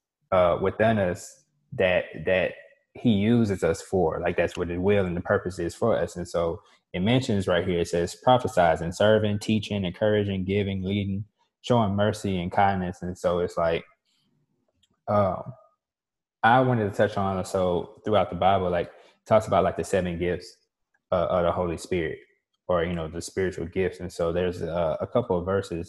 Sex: male